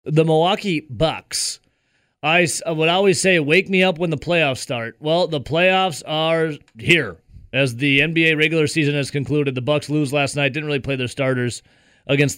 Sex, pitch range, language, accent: male, 130-155 Hz, English, American